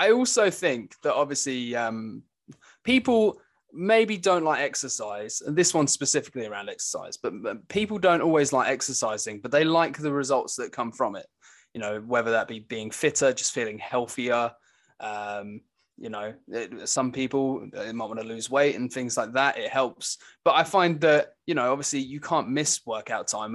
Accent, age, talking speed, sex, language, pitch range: British, 20-39, 180 wpm, male, English, 120-145 Hz